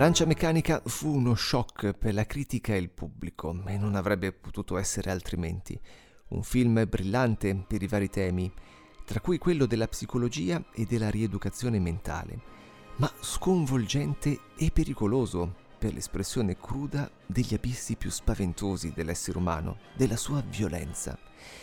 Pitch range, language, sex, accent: 95-130 Hz, Italian, male, native